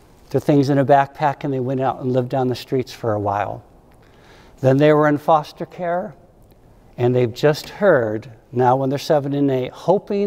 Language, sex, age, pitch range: English, male, 60-79, 115-150 Hz